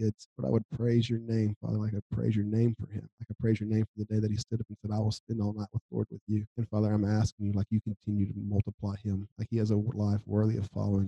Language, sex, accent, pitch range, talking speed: English, male, American, 100-110 Hz, 305 wpm